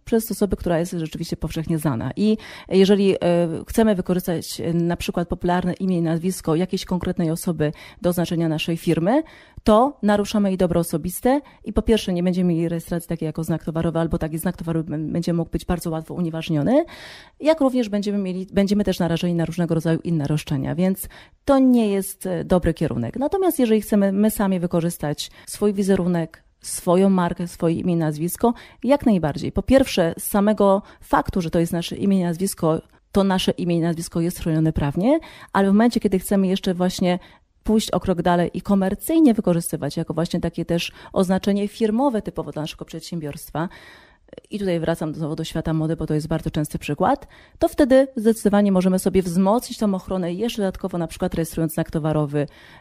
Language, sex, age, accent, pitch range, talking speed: Polish, female, 30-49, native, 165-205 Hz, 175 wpm